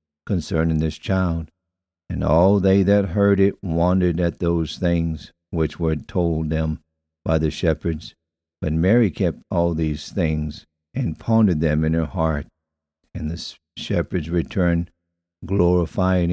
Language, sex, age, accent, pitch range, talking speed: English, male, 60-79, American, 80-95 Hz, 135 wpm